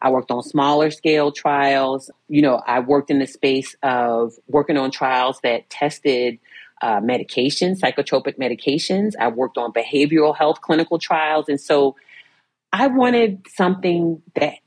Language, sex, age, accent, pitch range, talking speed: English, female, 30-49, American, 135-175 Hz, 145 wpm